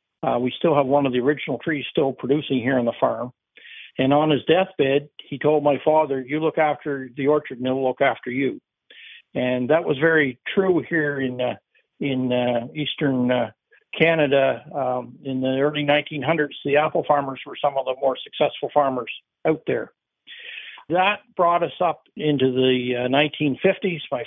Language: English